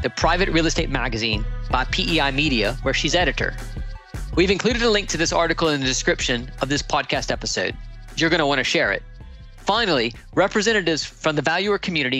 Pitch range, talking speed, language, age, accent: 135-185 Hz, 185 wpm, English, 40-59, American